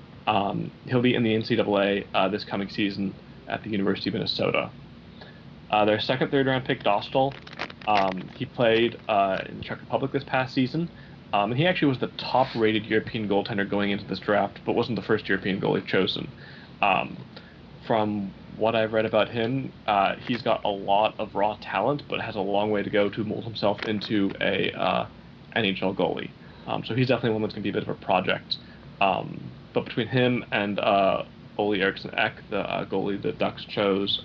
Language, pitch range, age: English, 100-125 Hz, 20-39